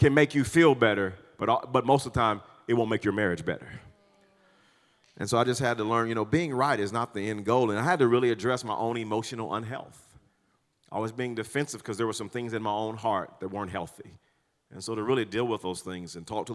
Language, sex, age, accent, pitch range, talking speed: English, male, 40-59, American, 105-130 Hz, 255 wpm